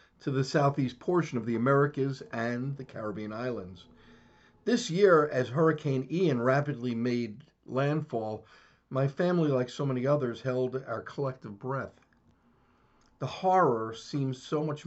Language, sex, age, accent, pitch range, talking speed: English, male, 50-69, American, 115-145 Hz, 135 wpm